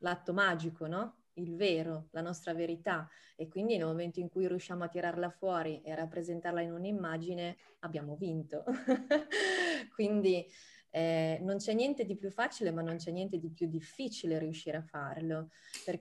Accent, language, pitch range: native, Italian, 165-205 Hz